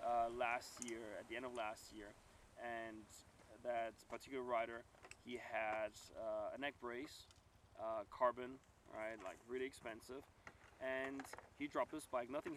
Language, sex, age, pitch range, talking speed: English, male, 20-39, 110-135 Hz, 150 wpm